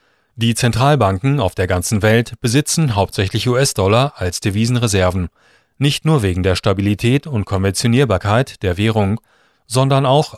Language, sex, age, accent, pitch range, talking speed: German, male, 30-49, German, 100-135 Hz, 125 wpm